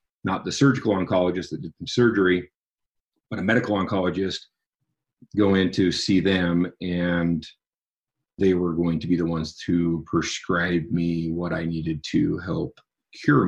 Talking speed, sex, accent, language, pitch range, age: 150 wpm, male, American, English, 85-105 Hz, 40-59